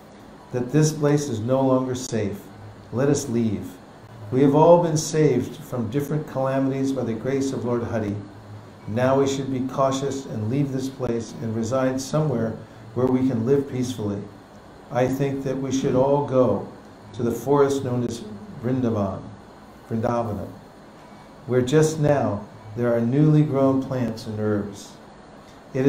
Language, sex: English, male